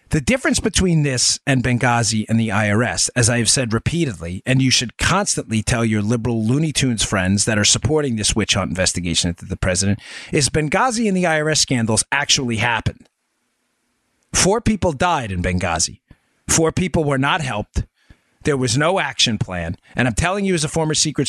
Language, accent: English, American